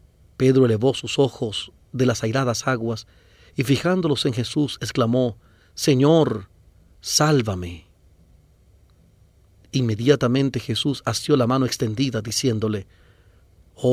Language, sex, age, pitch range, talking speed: English, male, 40-59, 100-130 Hz, 100 wpm